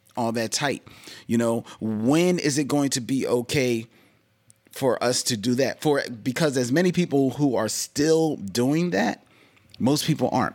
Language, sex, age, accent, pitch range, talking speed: English, male, 30-49, American, 110-140 Hz, 170 wpm